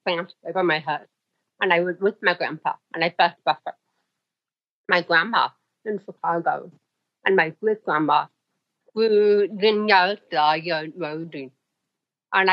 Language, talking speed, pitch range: English, 120 wpm, 170-210 Hz